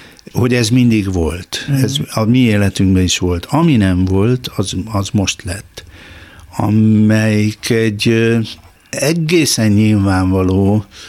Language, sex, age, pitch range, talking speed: Hungarian, male, 60-79, 100-115 Hz, 110 wpm